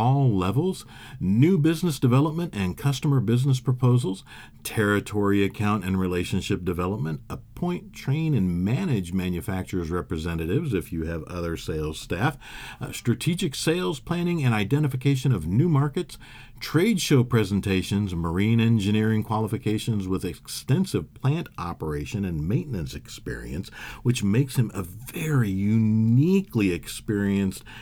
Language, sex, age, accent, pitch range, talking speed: English, male, 50-69, American, 95-130 Hz, 120 wpm